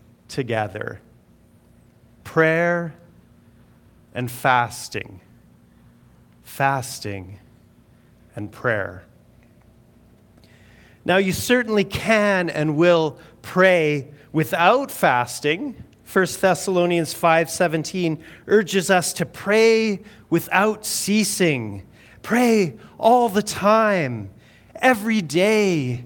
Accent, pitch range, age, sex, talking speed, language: American, 125-200 Hz, 30-49, male, 70 wpm, English